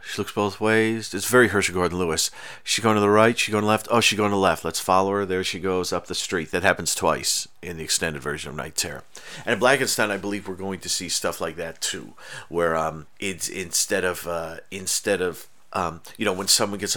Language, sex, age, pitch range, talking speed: English, male, 40-59, 90-105 Hz, 250 wpm